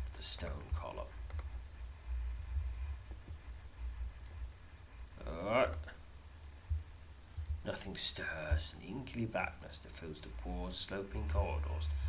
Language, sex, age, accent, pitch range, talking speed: English, male, 40-59, British, 75-90 Hz, 70 wpm